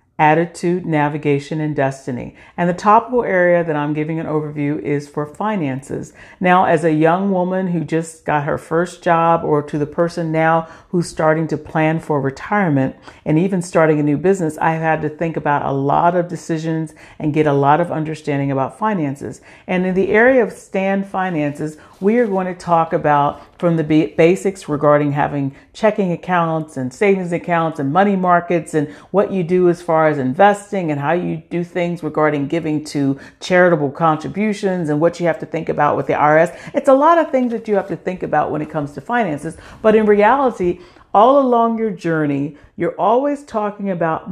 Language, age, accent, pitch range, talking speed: English, 50-69, American, 155-195 Hz, 190 wpm